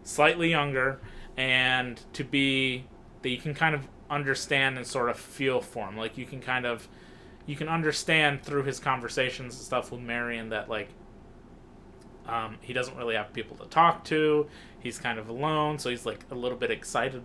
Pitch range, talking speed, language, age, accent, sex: 120-135 Hz, 190 wpm, English, 20-39, American, male